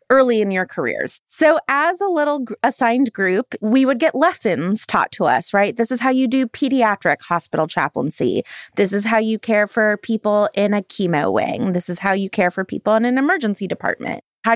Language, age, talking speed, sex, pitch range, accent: English, 20-39, 200 wpm, female, 200-265 Hz, American